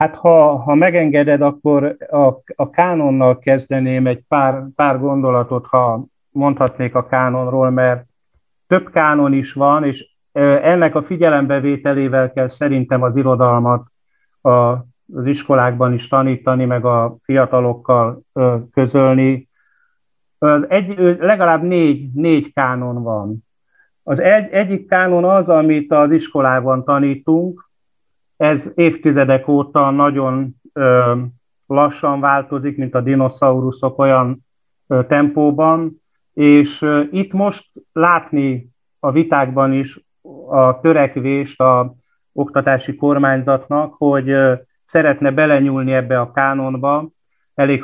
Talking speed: 105 wpm